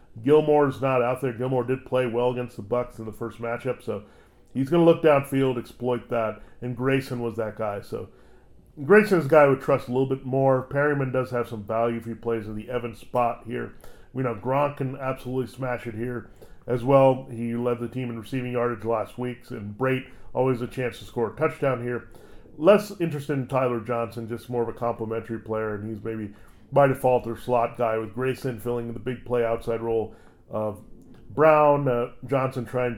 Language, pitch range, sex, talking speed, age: English, 115-130 Hz, male, 210 wpm, 40-59